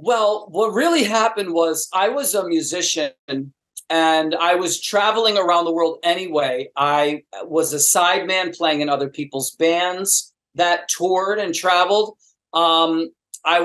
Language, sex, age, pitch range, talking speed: English, male, 40-59, 155-195 Hz, 140 wpm